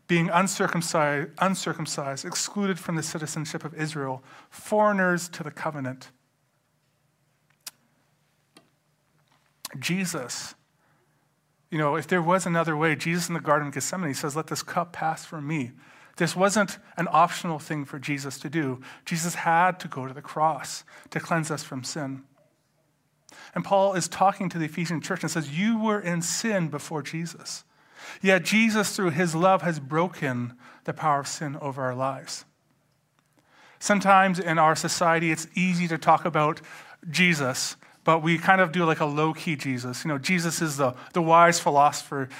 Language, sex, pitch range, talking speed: English, male, 150-180 Hz, 160 wpm